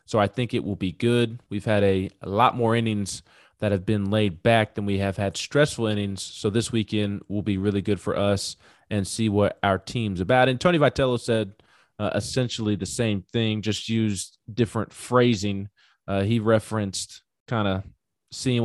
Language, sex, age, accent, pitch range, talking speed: English, male, 20-39, American, 100-120 Hz, 190 wpm